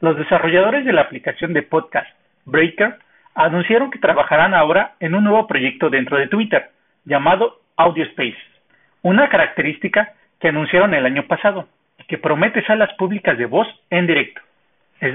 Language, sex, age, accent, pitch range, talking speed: Spanish, male, 40-59, Mexican, 160-220 Hz, 150 wpm